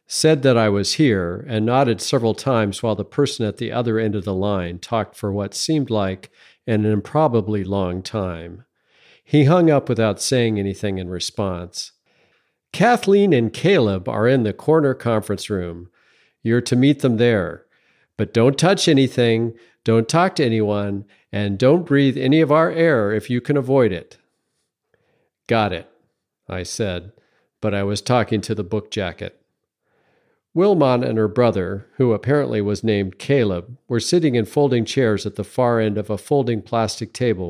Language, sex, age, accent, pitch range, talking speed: English, male, 50-69, American, 100-130 Hz, 170 wpm